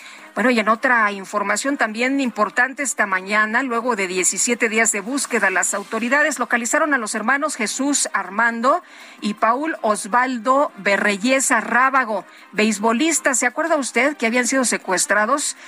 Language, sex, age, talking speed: Spanish, female, 40-59, 140 wpm